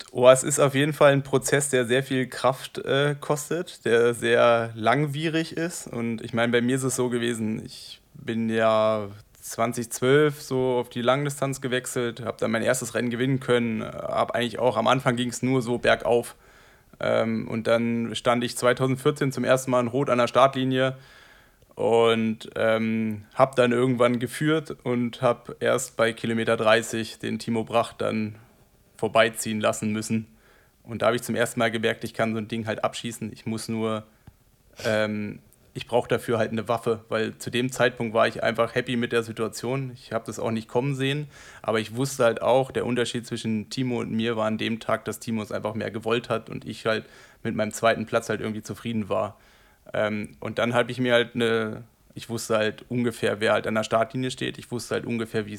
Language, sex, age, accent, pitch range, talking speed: German, male, 20-39, German, 110-125 Hz, 200 wpm